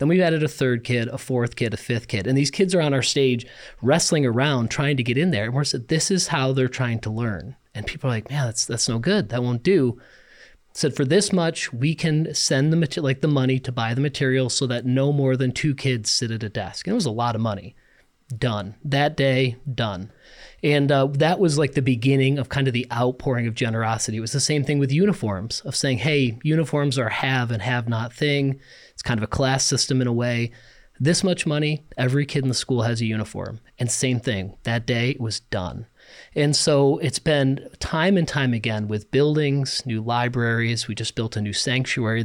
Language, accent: English, American